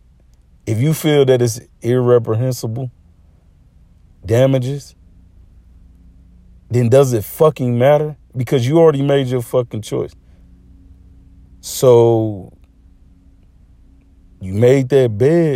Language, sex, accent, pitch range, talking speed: English, male, American, 90-120 Hz, 95 wpm